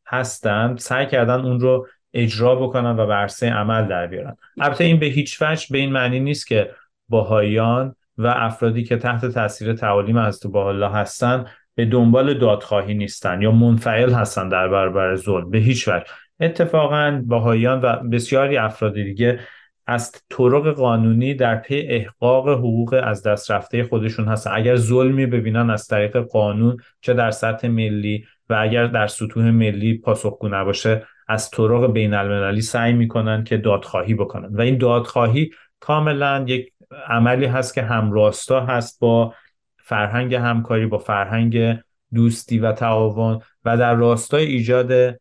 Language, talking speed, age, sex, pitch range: Persian, 145 wpm, 30-49, male, 105-125 Hz